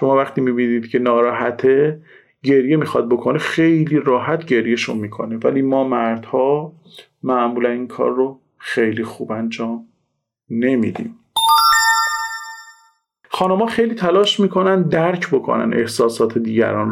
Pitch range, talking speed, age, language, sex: 135-185 Hz, 110 wpm, 40-59, Persian, male